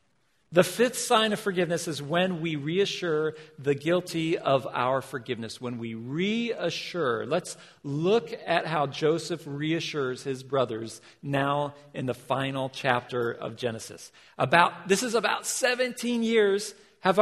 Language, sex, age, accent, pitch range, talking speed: English, male, 50-69, American, 155-215 Hz, 135 wpm